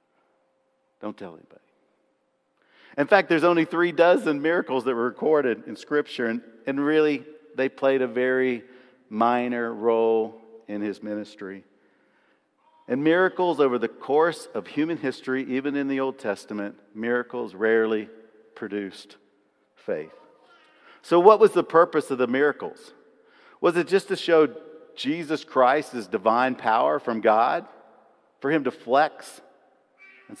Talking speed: 135 wpm